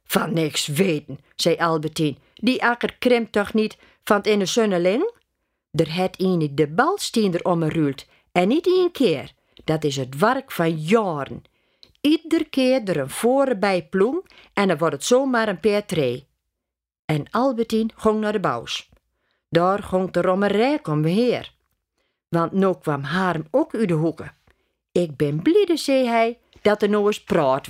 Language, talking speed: Dutch, 160 wpm